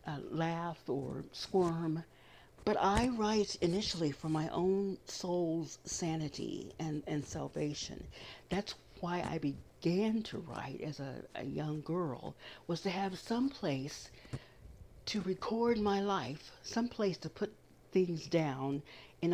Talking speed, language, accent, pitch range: 135 wpm, English, American, 145-185 Hz